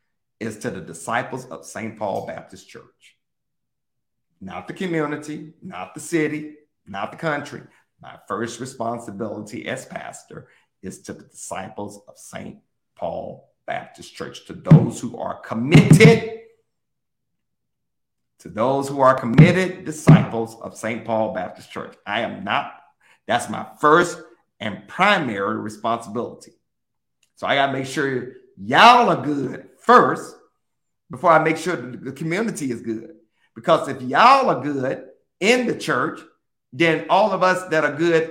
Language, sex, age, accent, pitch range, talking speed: English, male, 50-69, American, 125-180 Hz, 140 wpm